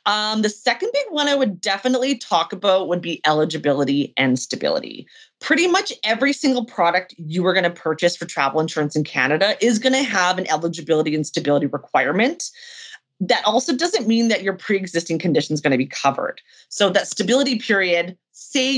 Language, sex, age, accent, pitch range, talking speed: English, female, 30-49, American, 165-240 Hz, 180 wpm